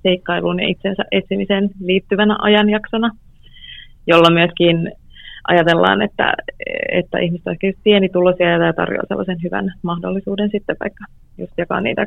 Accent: native